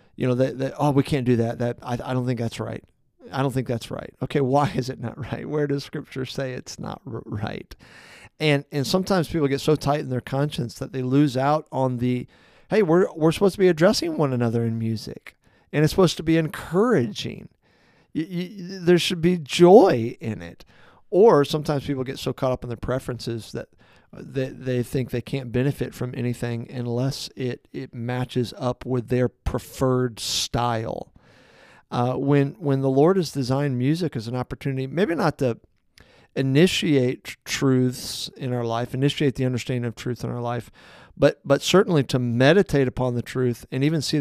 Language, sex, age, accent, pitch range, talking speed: English, male, 40-59, American, 120-145 Hz, 190 wpm